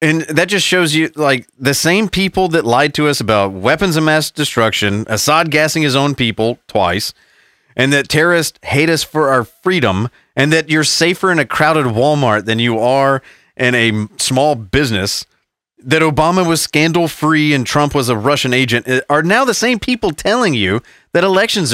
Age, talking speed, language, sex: 30-49, 180 wpm, English, male